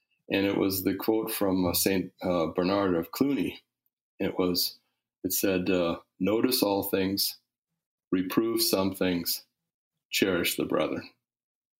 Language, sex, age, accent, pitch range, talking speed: English, male, 40-59, American, 95-115 Hz, 130 wpm